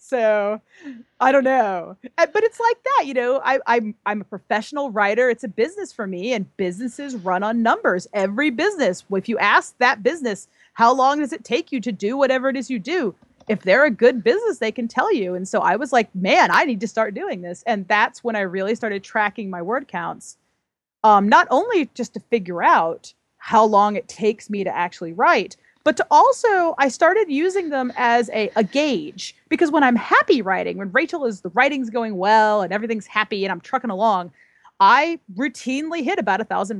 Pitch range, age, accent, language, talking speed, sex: 205-280 Hz, 30-49, American, English, 210 wpm, female